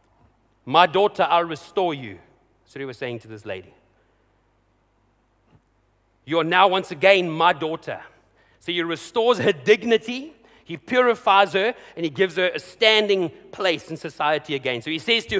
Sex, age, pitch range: male, 40-59, 120-195 Hz